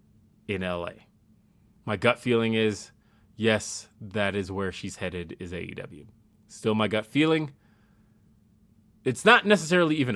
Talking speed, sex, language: 130 wpm, male, English